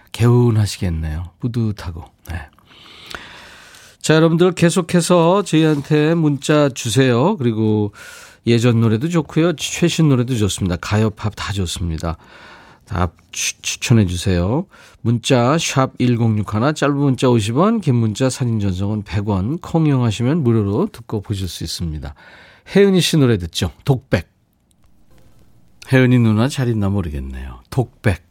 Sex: male